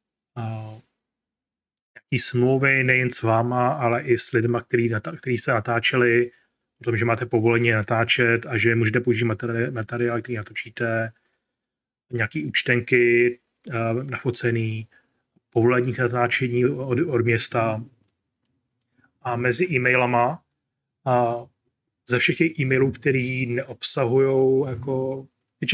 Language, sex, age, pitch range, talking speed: Czech, male, 30-49, 115-130 Hz, 105 wpm